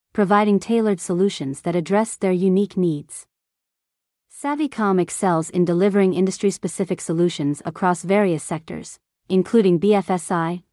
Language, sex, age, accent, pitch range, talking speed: English, female, 40-59, American, 170-205 Hz, 105 wpm